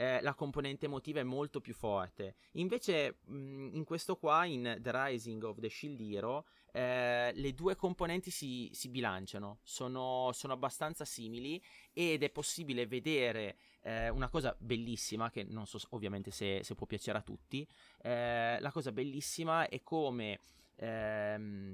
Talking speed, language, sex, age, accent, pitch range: 150 wpm, Italian, male, 20-39, native, 110-140 Hz